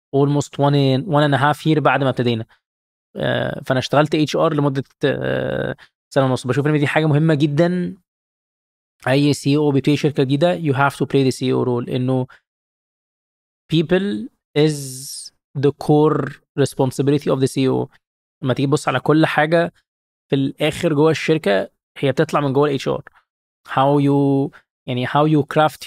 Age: 20-39